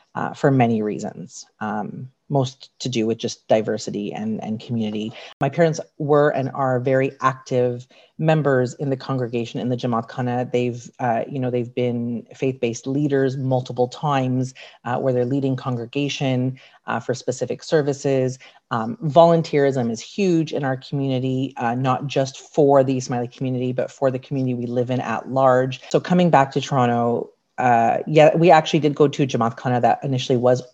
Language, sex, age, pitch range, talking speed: English, female, 40-59, 120-140 Hz, 175 wpm